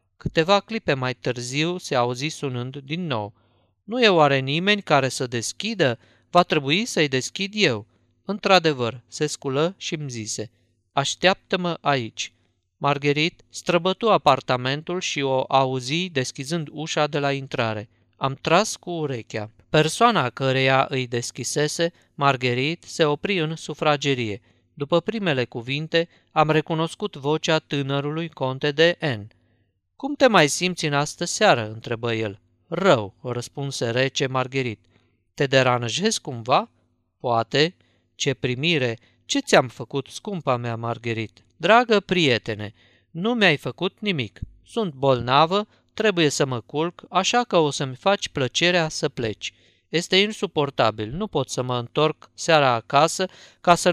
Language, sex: Romanian, male